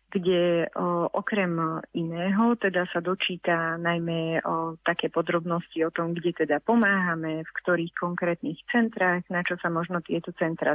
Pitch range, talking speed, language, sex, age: 165-190 Hz, 145 wpm, Slovak, female, 30-49